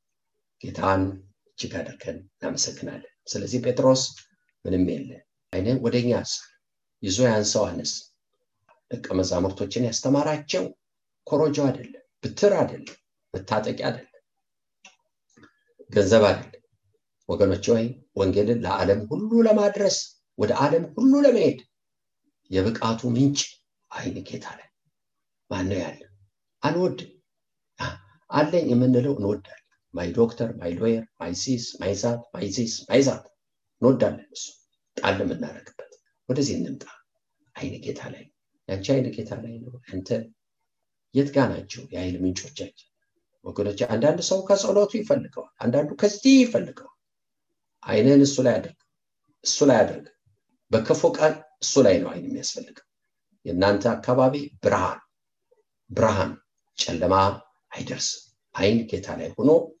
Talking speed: 45 wpm